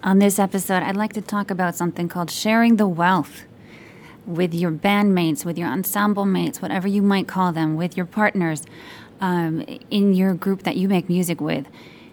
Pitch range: 170-205 Hz